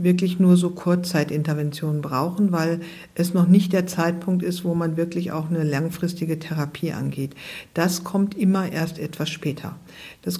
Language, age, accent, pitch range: German, 50-69, German, 160-190 Hz